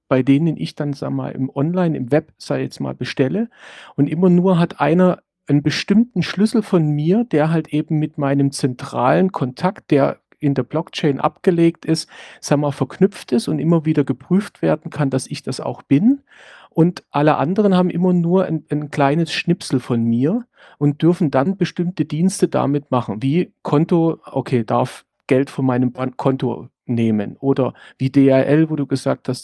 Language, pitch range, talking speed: German, 130-170 Hz, 175 wpm